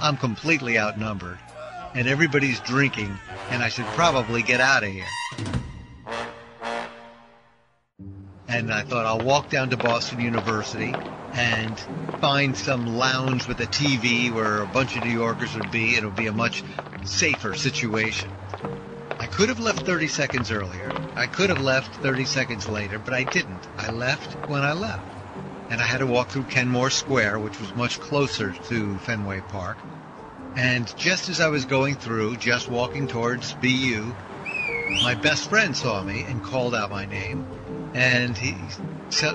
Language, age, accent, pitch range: English, 50-69, American, 110-135 Hz